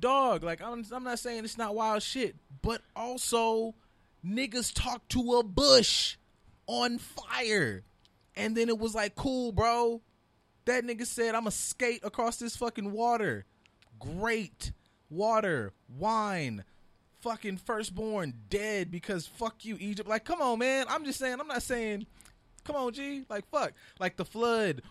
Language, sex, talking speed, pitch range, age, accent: English, male, 155 wpm, 170-230 Hz, 20-39, American